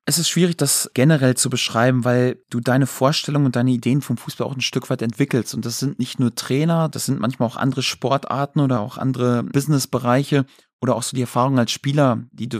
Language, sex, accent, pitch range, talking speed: German, male, German, 120-135 Hz, 220 wpm